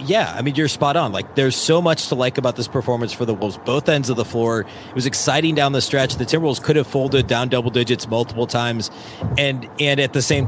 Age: 30-49